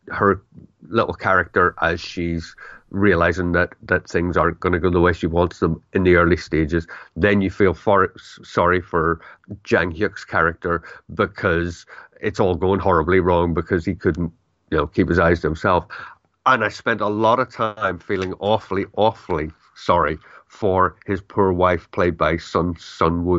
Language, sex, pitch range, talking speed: English, male, 85-95 Hz, 170 wpm